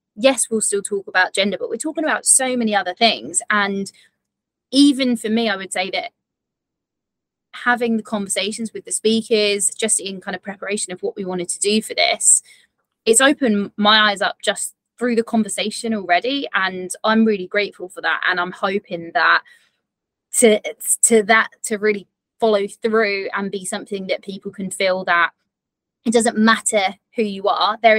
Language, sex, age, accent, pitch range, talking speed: English, female, 20-39, British, 195-240 Hz, 180 wpm